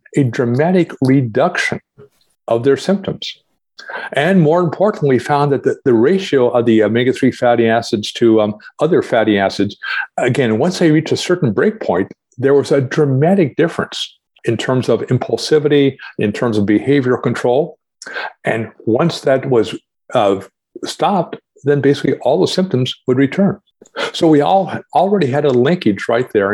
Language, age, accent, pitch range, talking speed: English, 50-69, American, 115-150 Hz, 155 wpm